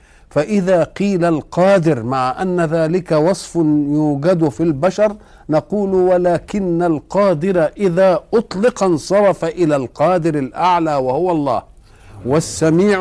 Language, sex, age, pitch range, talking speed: Arabic, male, 50-69, 145-190 Hz, 100 wpm